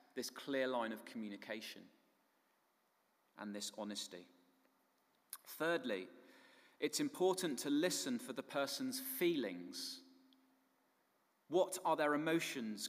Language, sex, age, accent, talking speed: English, male, 30-49, British, 100 wpm